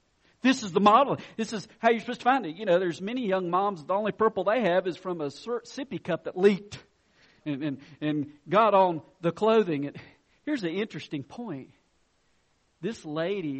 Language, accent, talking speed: English, American, 195 wpm